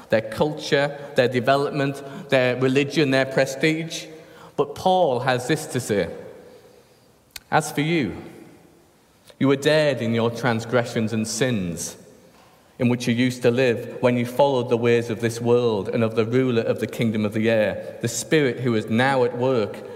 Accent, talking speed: British, 170 wpm